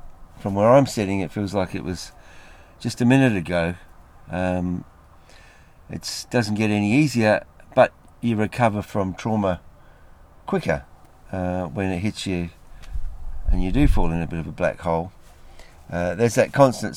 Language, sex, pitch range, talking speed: English, male, 85-105 Hz, 155 wpm